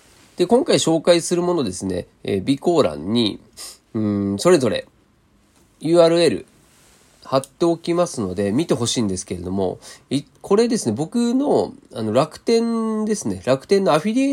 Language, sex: Japanese, male